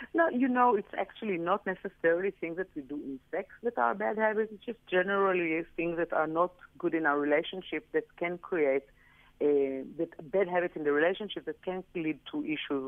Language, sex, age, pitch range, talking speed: English, female, 50-69, 145-190 Hz, 200 wpm